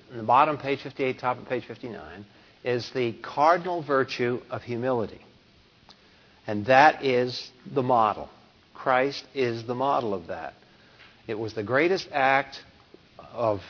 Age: 60-79